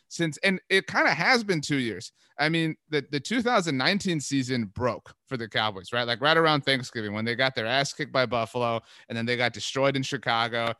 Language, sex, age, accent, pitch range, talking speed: English, male, 30-49, American, 120-160 Hz, 215 wpm